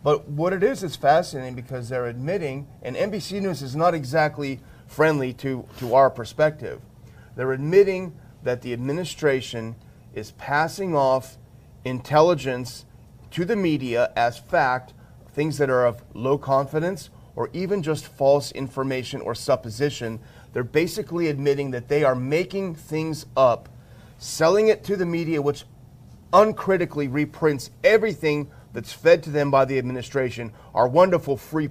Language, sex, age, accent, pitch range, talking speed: English, male, 40-59, American, 125-155 Hz, 140 wpm